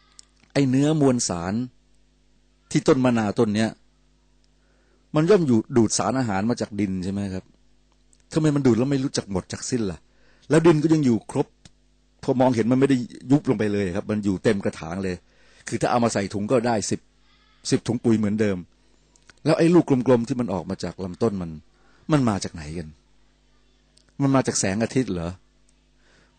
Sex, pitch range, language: male, 90-125 Hz, Thai